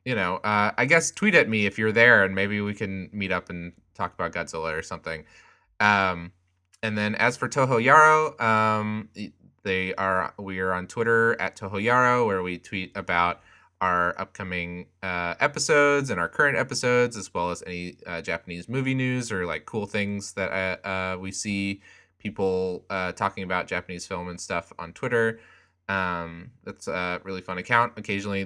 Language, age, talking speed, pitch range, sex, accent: English, 20-39, 180 wpm, 90-110 Hz, male, American